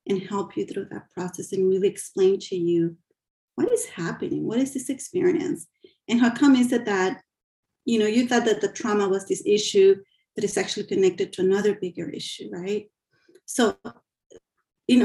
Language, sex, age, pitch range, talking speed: English, female, 30-49, 185-245 Hz, 180 wpm